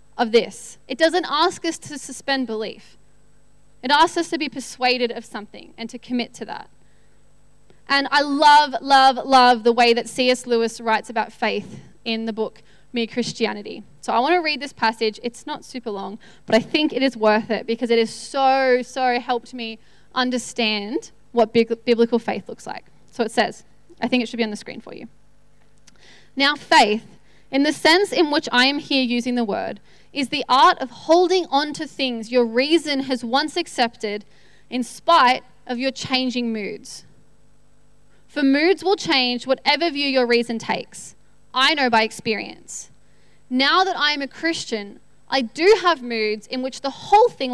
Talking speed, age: 180 wpm, 10-29